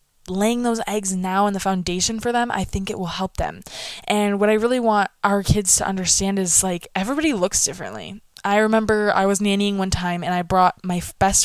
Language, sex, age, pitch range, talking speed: English, female, 20-39, 190-250 Hz, 215 wpm